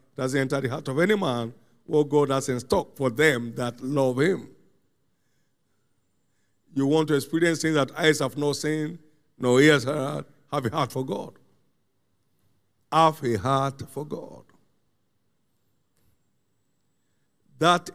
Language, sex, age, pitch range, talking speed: English, male, 50-69, 115-160 Hz, 135 wpm